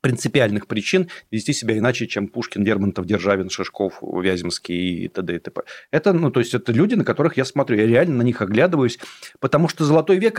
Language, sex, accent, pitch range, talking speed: Russian, male, native, 135-190 Hz, 195 wpm